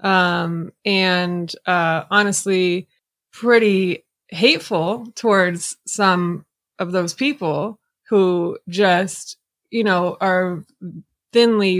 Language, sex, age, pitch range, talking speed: English, female, 20-39, 180-215 Hz, 85 wpm